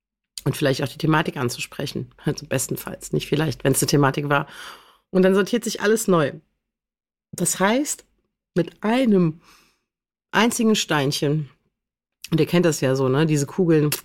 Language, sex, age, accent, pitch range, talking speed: German, female, 40-59, German, 145-180 Hz, 155 wpm